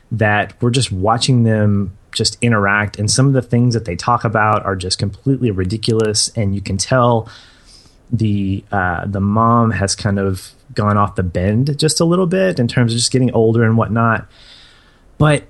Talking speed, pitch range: 185 wpm, 100-130 Hz